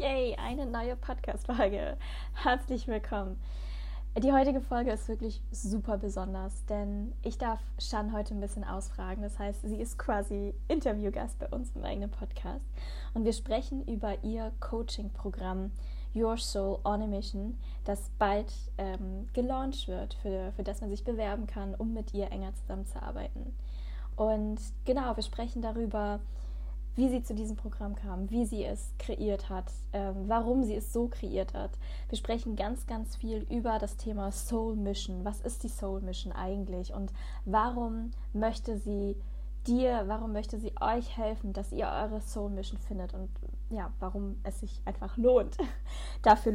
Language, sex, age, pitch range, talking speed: German, female, 10-29, 200-230 Hz, 160 wpm